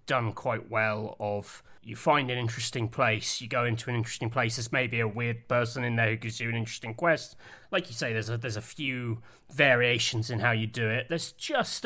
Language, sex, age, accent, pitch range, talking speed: English, male, 30-49, British, 110-130 Hz, 225 wpm